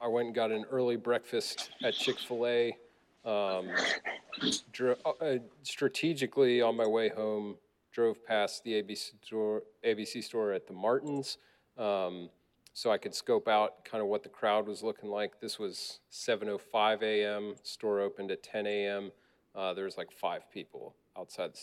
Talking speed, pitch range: 150 wpm, 105-130 Hz